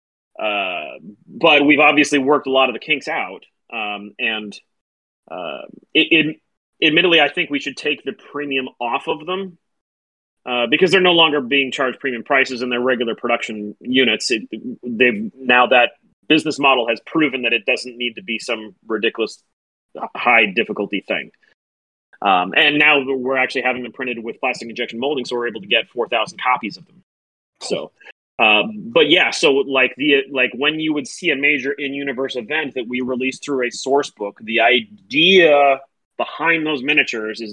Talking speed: 175 wpm